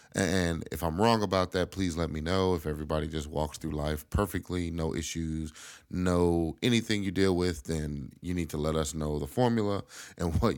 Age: 30-49